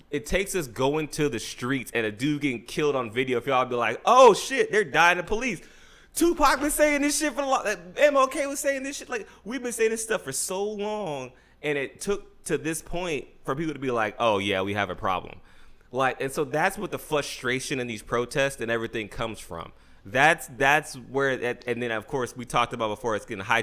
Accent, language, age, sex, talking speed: American, English, 20-39, male, 230 wpm